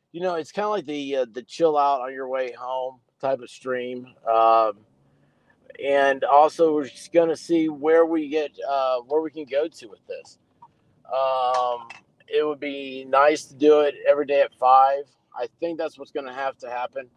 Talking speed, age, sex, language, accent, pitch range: 195 wpm, 40-59, male, English, American, 135-180 Hz